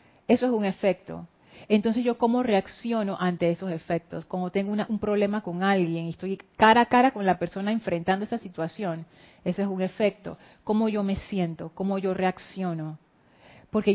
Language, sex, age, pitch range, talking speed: Spanish, female, 40-59, 180-230 Hz, 170 wpm